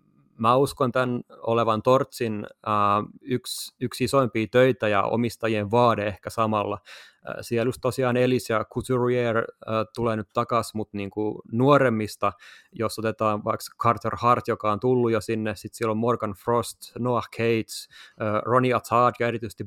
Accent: native